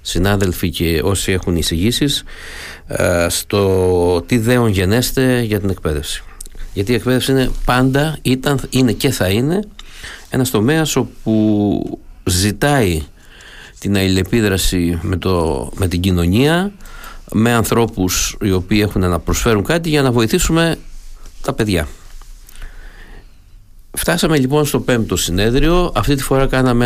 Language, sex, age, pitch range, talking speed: Greek, male, 50-69, 90-120 Hz, 120 wpm